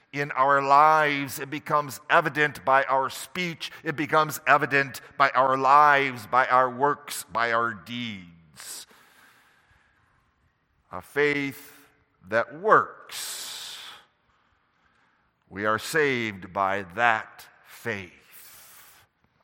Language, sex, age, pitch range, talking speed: English, male, 50-69, 120-190 Hz, 95 wpm